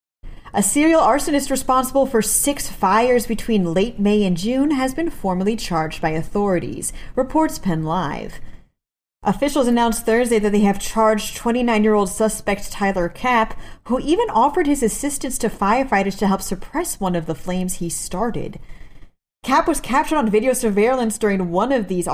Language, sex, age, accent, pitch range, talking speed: English, female, 30-49, American, 185-250 Hz, 155 wpm